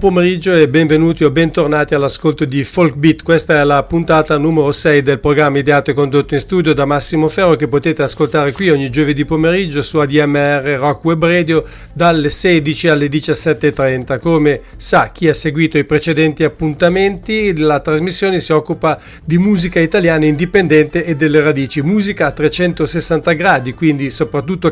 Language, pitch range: English, 150-180 Hz